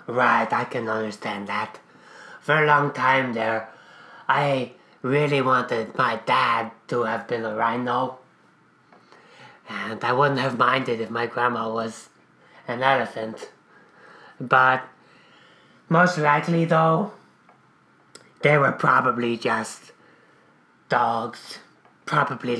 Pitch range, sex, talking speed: 120-140 Hz, male, 110 wpm